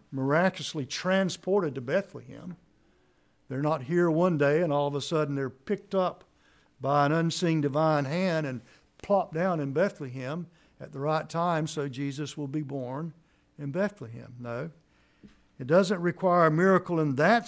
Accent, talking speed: American, 160 wpm